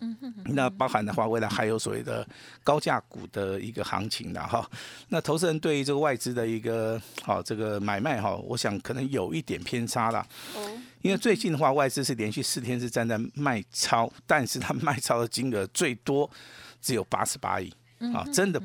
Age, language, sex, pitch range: 50-69, Chinese, male, 110-155 Hz